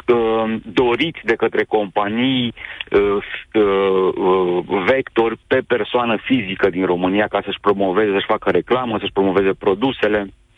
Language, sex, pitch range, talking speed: Romanian, male, 105-145 Hz, 120 wpm